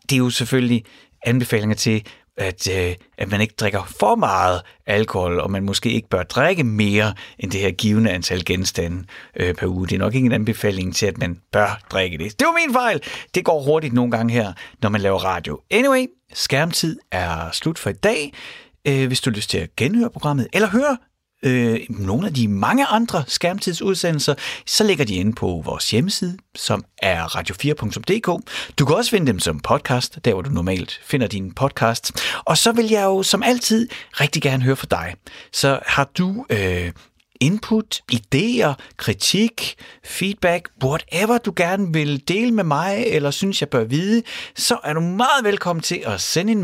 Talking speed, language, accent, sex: 185 wpm, Danish, native, male